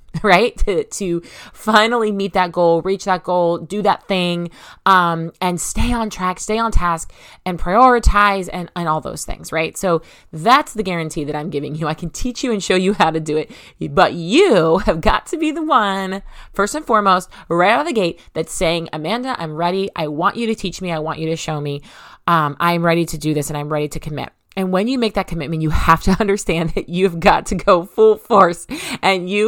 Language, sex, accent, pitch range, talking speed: English, female, American, 170-225 Hz, 225 wpm